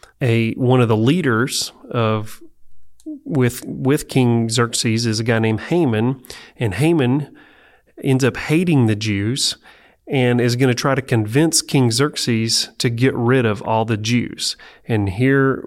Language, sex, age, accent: English, male, 30-49, American